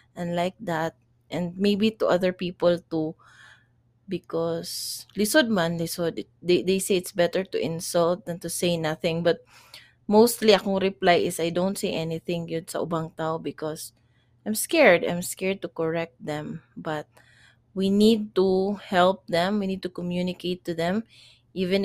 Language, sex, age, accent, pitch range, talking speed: English, female, 20-39, Filipino, 160-200 Hz, 160 wpm